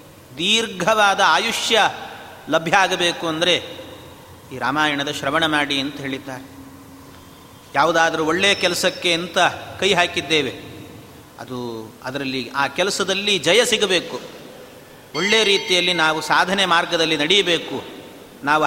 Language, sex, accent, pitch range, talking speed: Kannada, male, native, 155-195 Hz, 95 wpm